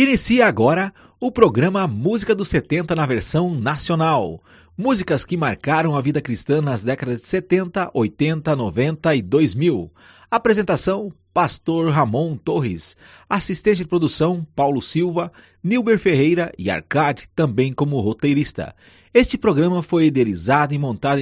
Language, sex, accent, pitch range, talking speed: Portuguese, male, Brazilian, 135-200 Hz, 130 wpm